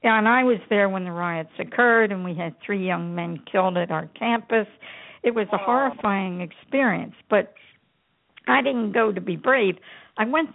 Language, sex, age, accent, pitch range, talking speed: English, female, 60-79, American, 190-240 Hz, 180 wpm